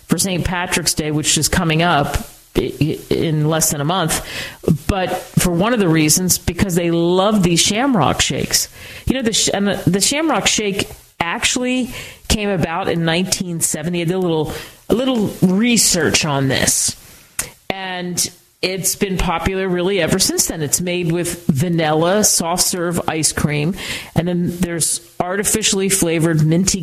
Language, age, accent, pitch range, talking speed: English, 40-59, American, 160-190 Hz, 155 wpm